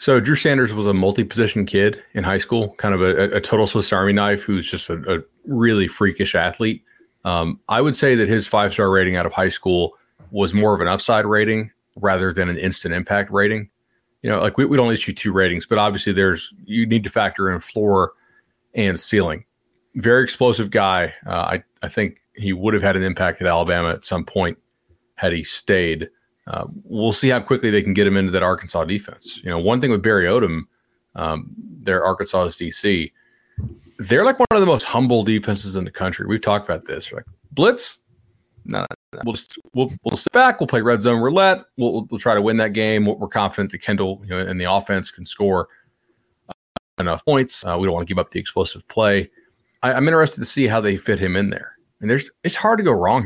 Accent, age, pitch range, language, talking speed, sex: American, 30-49, 95-120 Hz, English, 220 wpm, male